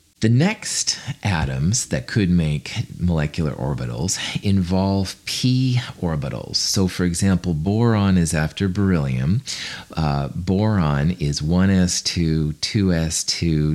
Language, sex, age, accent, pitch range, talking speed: English, male, 40-59, American, 80-110 Hz, 100 wpm